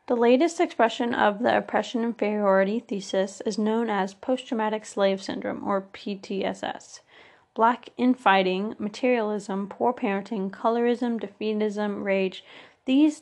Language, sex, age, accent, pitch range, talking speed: English, female, 20-39, American, 195-235 Hz, 110 wpm